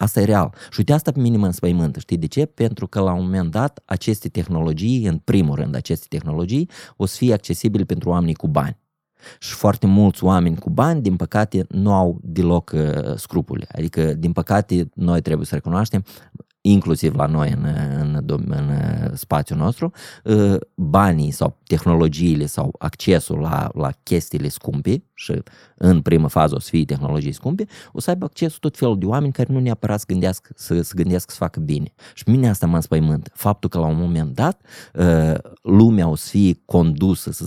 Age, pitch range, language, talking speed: 20-39, 85-120 Hz, Romanian, 185 wpm